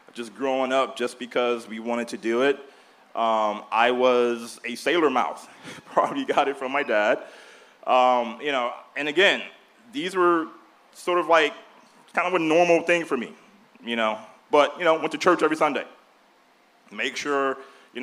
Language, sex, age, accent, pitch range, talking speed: English, male, 30-49, American, 125-160 Hz, 175 wpm